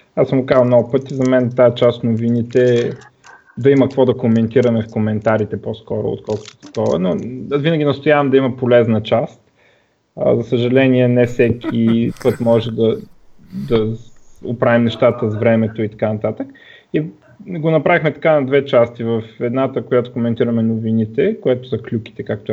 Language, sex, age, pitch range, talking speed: Bulgarian, male, 20-39, 115-150 Hz, 160 wpm